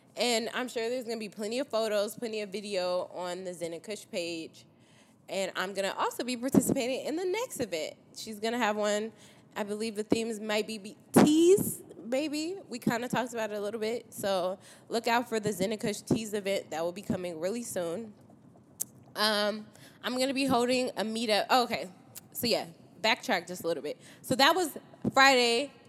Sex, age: female, 20-39